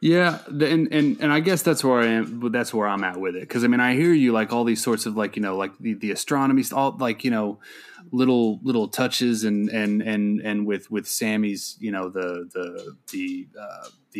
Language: English